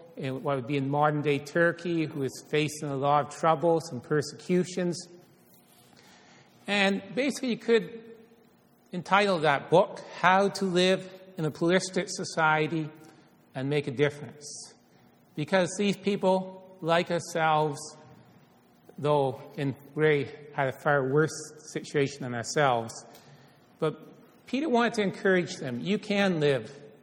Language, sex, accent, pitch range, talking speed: English, male, American, 145-180 Hz, 130 wpm